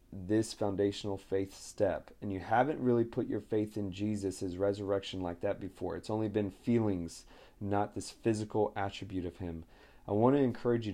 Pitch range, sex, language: 95-110 Hz, male, English